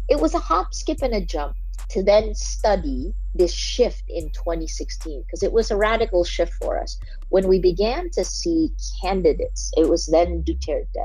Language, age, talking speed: English, 50-69, 180 wpm